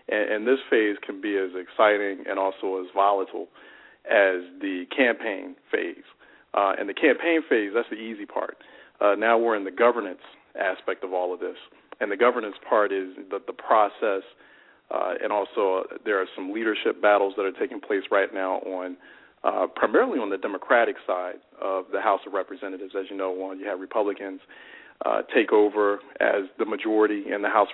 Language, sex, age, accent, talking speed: English, male, 40-59, American, 185 wpm